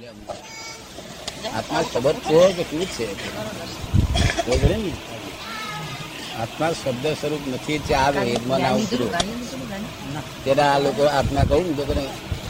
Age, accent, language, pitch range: 60-79, native, Gujarati, 135-170 Hz